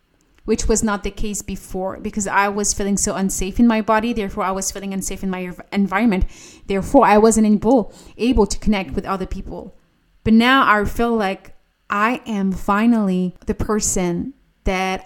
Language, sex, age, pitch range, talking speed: English, female, 30-49, 190-220 Hz, 175 wpm